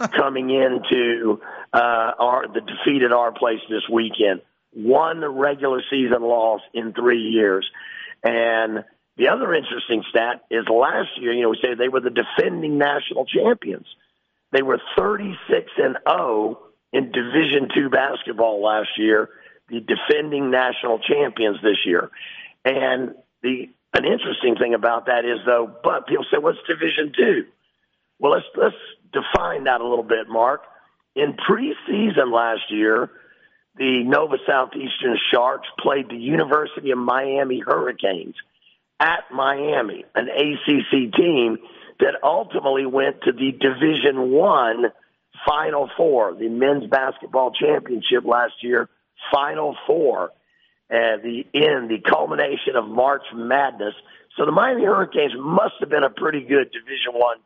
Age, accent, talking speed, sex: 50-69, American, 140 wpm, male